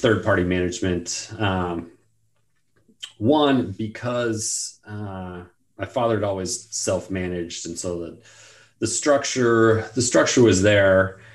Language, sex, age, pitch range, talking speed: English, male, 30-49, 90-115 Hz, 105 wpm